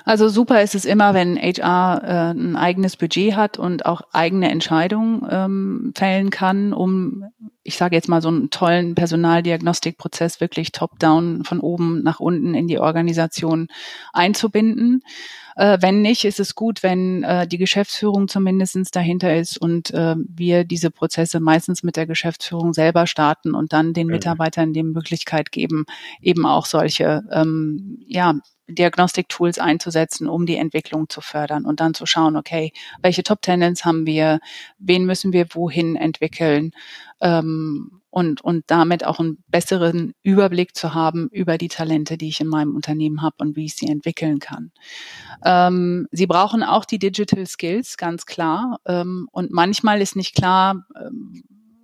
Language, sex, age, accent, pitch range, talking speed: German, female, 30-49, German, 160-190 Hz, 155 wpm